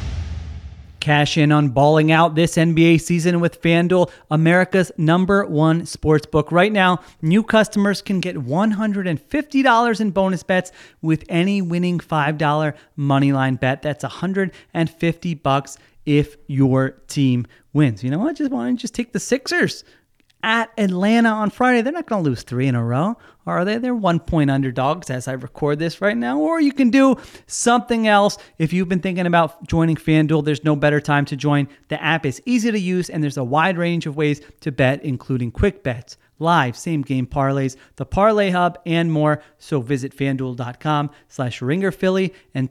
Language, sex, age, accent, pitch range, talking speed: English, male, 30-49, American, 135-185 Hz, 175 wpm